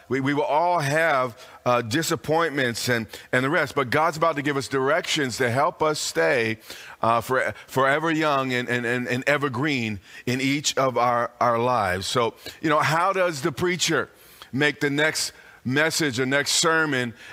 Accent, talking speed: American, 175 wpm